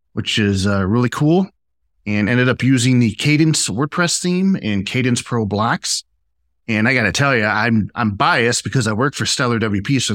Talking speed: 190 wpm